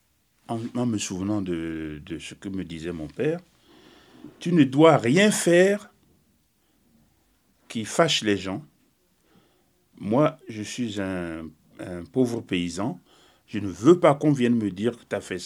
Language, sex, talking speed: French, male, 155 wpm